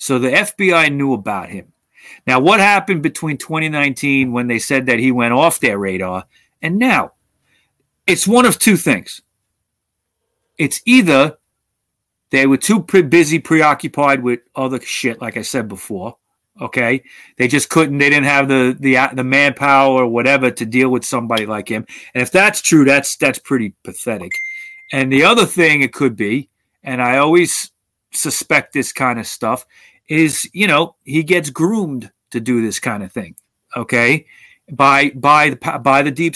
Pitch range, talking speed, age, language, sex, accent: 125-160 Hz, 170 wpm, 40-59, English, male, American